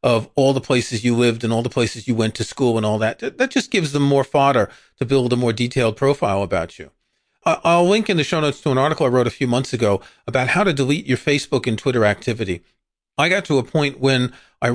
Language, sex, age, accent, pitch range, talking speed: English, male, 40-59, American, 125-165 Hz, 250 wpm